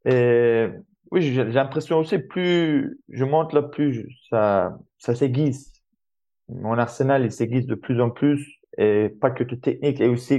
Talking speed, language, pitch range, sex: 160 wpm, French, 120-145 Hz, male